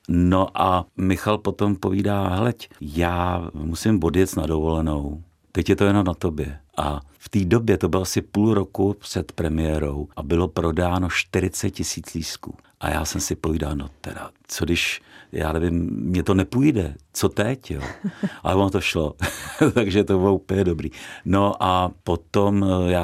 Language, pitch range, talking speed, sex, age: Czech, 80-95 Hz, 165 wpm, male, 50-69